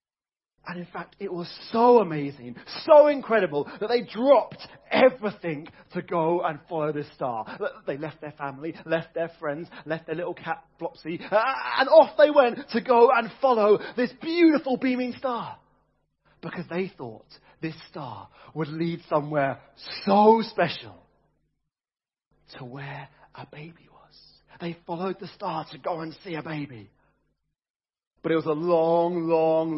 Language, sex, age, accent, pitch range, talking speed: English, male, 30-49, British, 160-245 Hz, 150 wpm